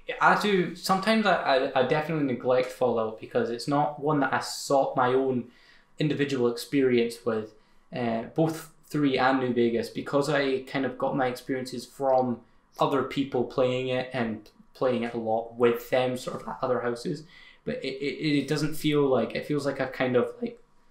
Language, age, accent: English, 10-29, British